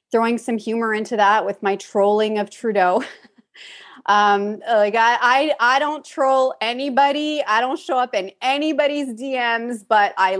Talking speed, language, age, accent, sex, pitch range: 155 wpm, English, 30-49, American, female, 190-240 Hz